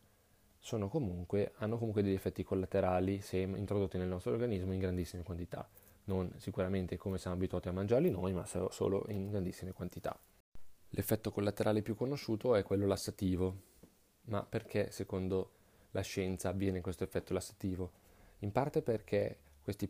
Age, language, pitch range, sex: 20-39, Italian, 95-110 Hz, male